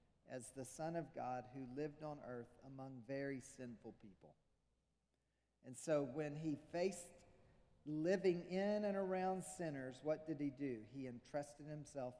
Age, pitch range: 40-59, 125-165 Hz